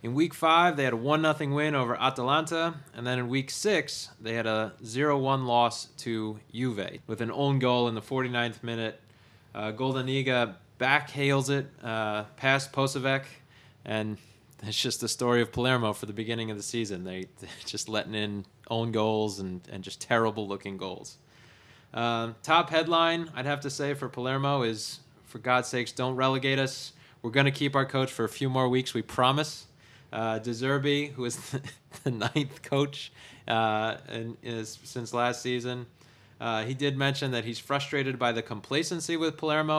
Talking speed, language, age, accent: 180 wpm, English, 20-39, American